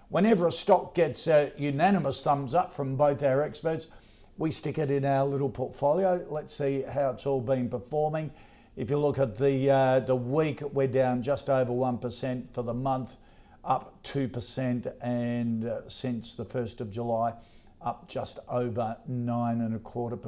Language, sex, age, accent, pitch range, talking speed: English, male, 50-69, Australian, 125-145 Hz, 165 wpm